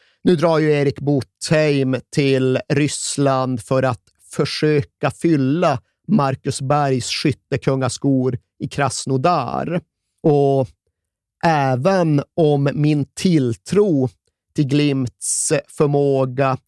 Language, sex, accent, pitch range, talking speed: Swedish, male, native, 125-150 Hz, 85 wpm